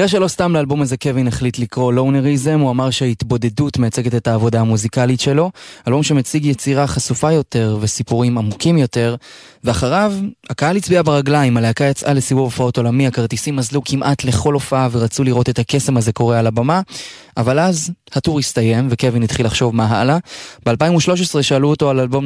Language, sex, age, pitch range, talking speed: Hebrew, male, 20-39, 120-150 Hz, 165 wpm